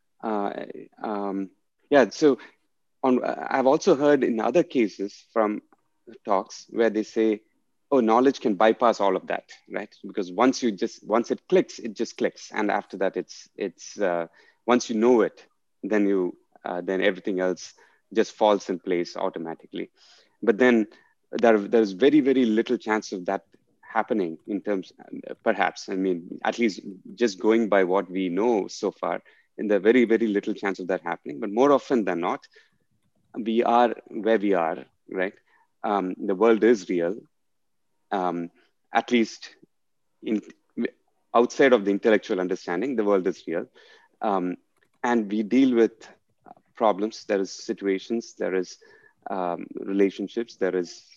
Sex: male